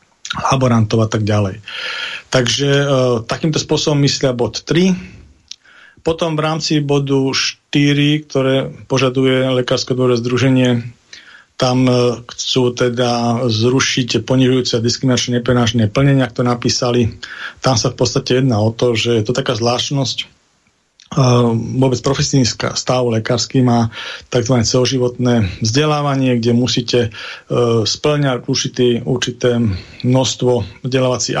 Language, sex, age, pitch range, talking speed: Slovak, male, 40-59, 120-135 Hz, 115 wpm